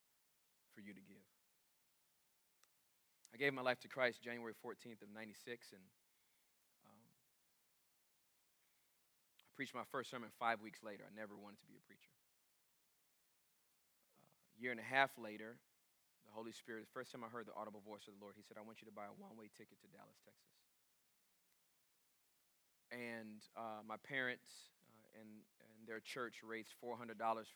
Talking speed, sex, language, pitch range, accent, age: 165 wpm, male, English, 105-120 Hz, American, 30-49